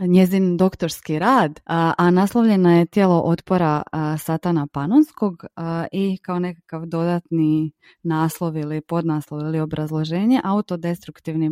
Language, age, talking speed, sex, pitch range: Croatian, 20-39, 115 wpm, female, 160-190 Hz